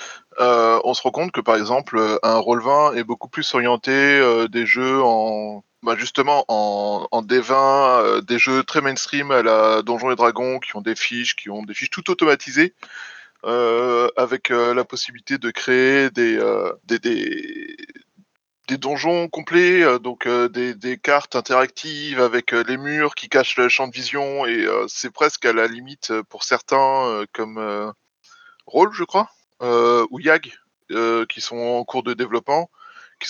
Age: 20-39